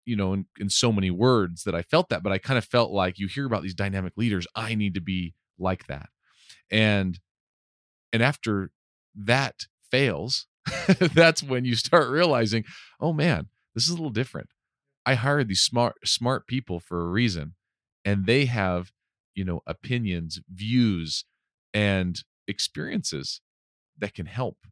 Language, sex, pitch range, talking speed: English, male, 90-120 Hz, 165 wpm